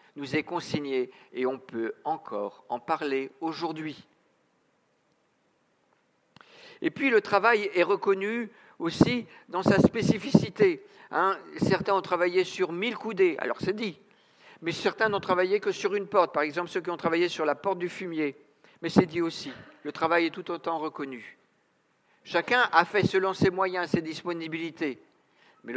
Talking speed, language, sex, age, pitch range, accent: 160 wpm, French, male, 50-69, 155-245 Hz, French